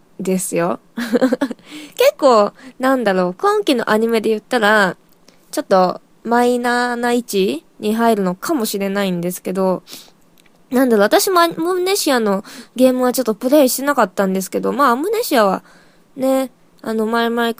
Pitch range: 195-280 Hz